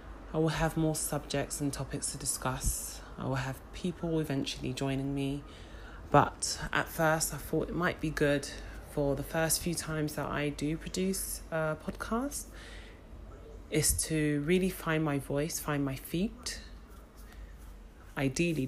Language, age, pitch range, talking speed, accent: English, 30-49, 130-155 Hz, 150 wpm, British